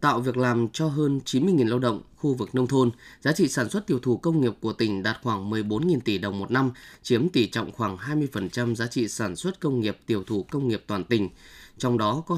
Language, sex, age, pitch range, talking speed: Vietnamese, male, 20-39, 110-145 Hz, 240 wpm